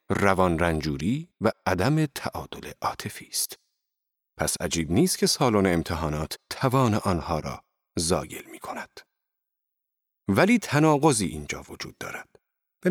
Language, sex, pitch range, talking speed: Persian, male, 90-130 Hz, 105 wpm